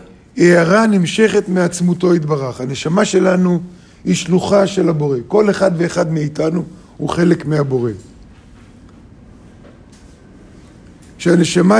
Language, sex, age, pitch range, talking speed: Hebrew, male, 50-69, 135-195 Hz, 95 wpm